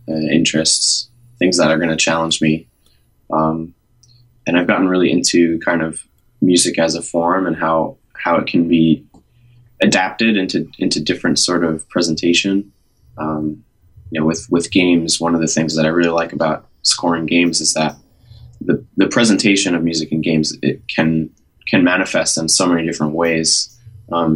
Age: 20-39